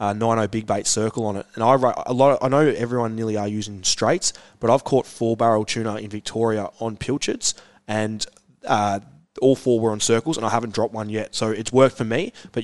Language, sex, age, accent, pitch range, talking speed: English, male, 20-39, Australian, 105-120 Hz, 210 wpm